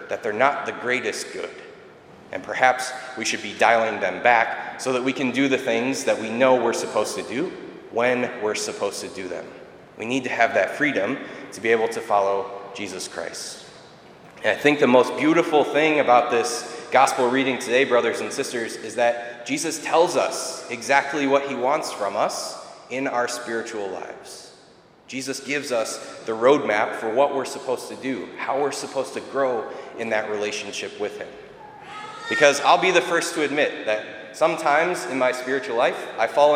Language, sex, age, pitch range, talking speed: English, male, 30-49, 110-145 Hz, 185 wpm